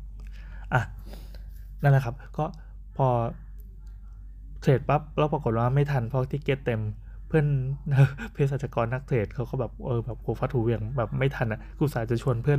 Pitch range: 115-140 Hz